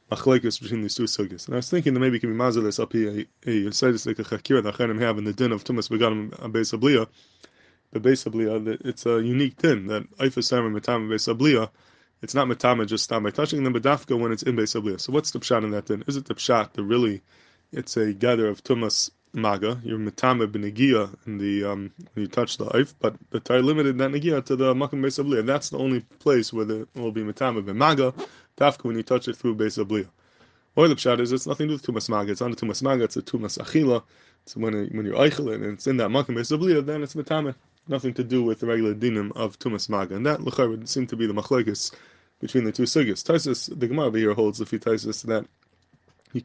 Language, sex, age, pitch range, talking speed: English, male, 20-39, 110-130 Hz, 220 wpm